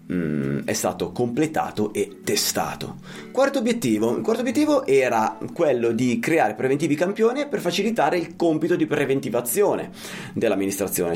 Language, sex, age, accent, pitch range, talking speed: Italian, male, 30-49, native, 100-150 Hz, 125 wpm